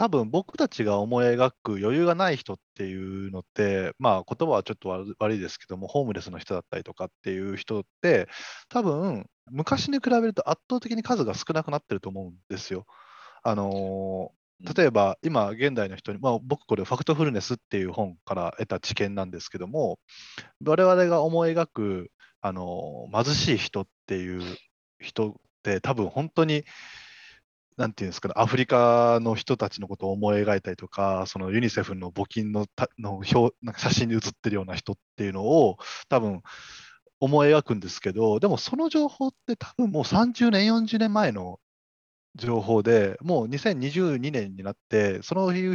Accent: native